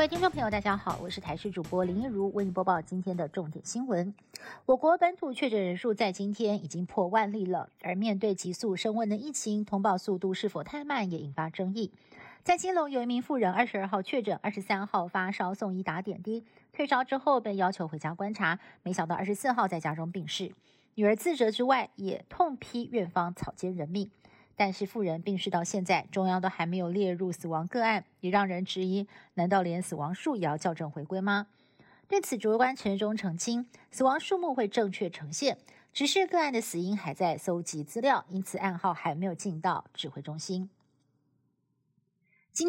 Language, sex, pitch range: Chinese, female, 185-235 Hz